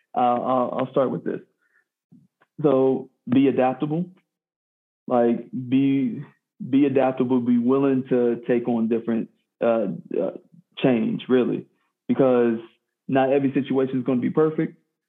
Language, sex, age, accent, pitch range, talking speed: English, male, 20-39, American, 115-135 Hz, 125 wpm